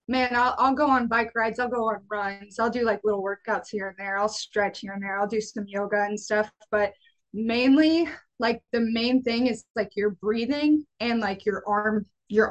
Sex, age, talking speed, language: female, 20-39, 215 wpm, English